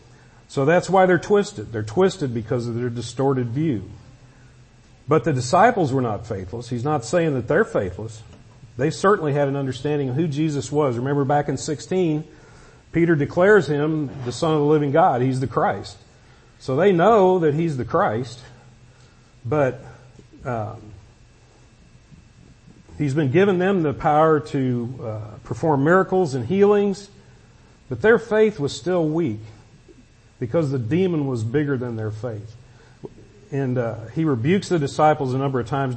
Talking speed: 155 wpm